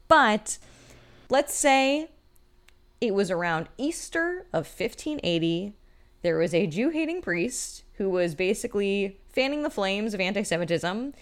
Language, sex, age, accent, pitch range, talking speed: English, female, 10-29, American, 160-230 Hz, 120 wpm